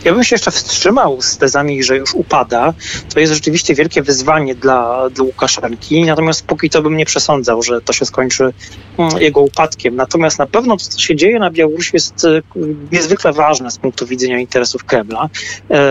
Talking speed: 175 wpm